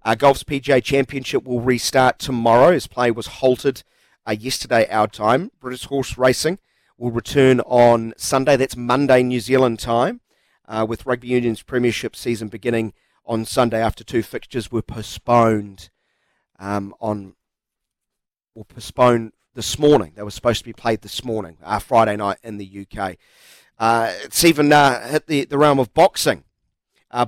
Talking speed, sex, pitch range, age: 160 wpm, male, 110-130 Hz, 40-59